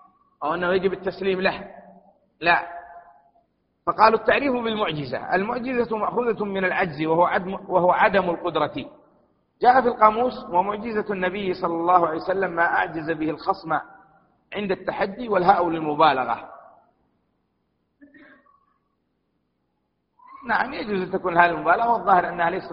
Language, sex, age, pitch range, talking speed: Arabic, male, 40-59, 175-235 Hz, 115 wpm